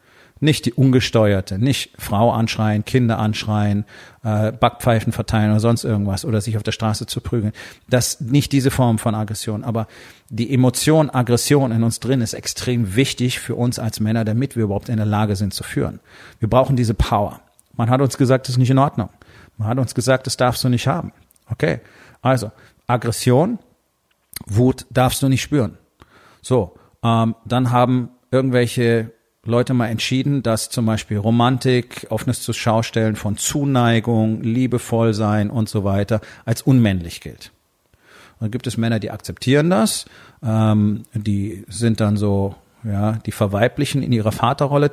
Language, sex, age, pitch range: German, male, 40-59, 110-125 Hz